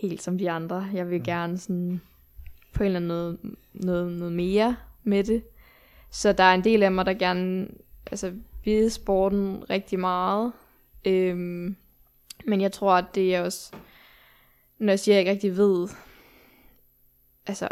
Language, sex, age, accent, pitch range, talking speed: Danish, female, 10-29, native, 180-205 Hz, 165 wpm